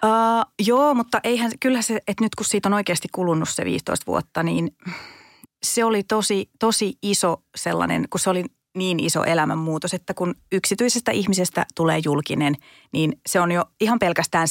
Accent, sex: native, female